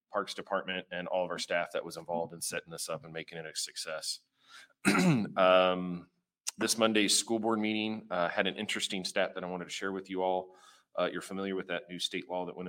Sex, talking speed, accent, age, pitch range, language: male, 225 wpm, American, 30-49, 85-95 Hz, English